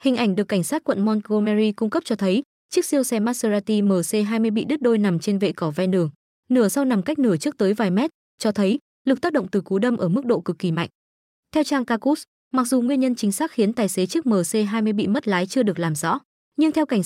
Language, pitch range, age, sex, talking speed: Vietnamese, 195-245 Hz, 20-39, female, 255 wpm